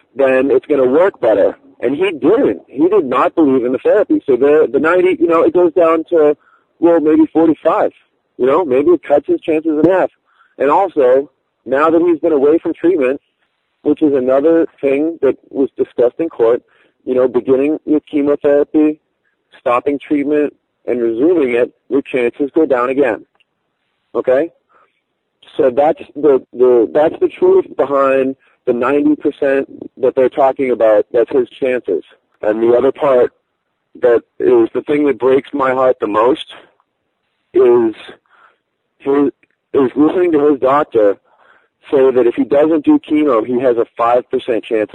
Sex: male